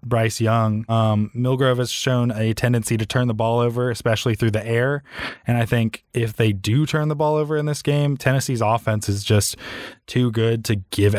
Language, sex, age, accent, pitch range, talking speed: English, male, 20-39, American, 110-130 Hz, 205 wpm